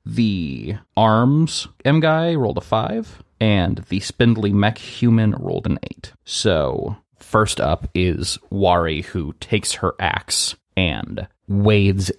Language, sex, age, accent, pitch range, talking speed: English, male, 30-49, American, 85-105 Hz, 125 wpm